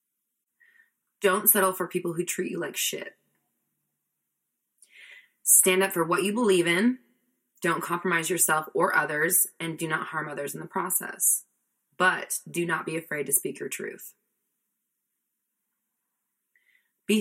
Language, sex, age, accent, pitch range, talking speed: English, female, 20-39, American, 160-205 Hz, 135 wpm